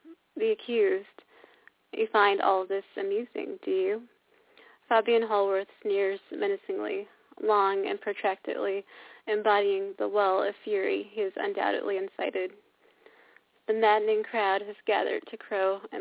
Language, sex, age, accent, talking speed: English, female, 20-39, American, 125 wpm